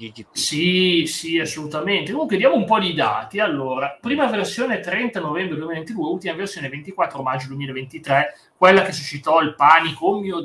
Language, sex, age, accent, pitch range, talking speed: Italian, male, 30-49, native, 140-180 Hz, 155 wpm